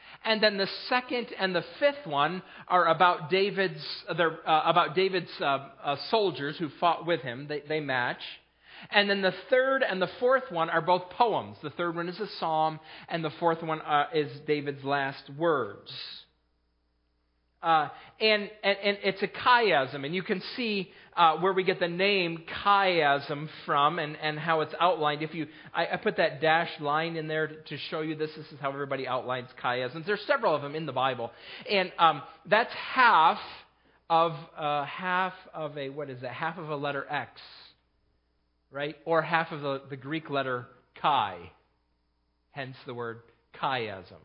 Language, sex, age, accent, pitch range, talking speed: English, male, 40-59, American, 135-190 Hz, 170 wpm